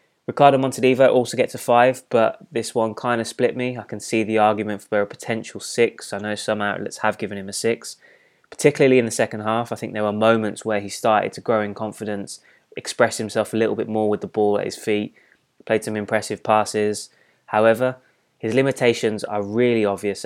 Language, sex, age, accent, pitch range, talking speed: English, male, 20-39, British, 100-115 Hz, 205 wpm